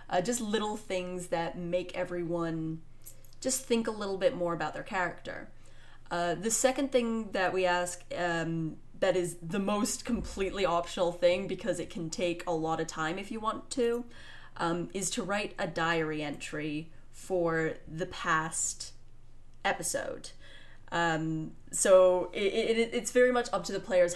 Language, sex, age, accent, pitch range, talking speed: English, female, 30-49, American, 165-200 Hz, 155 wpm